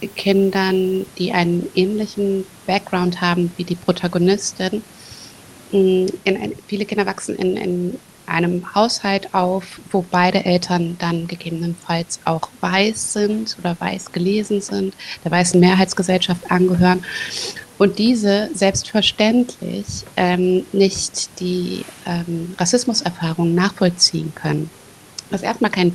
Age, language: 20-39, German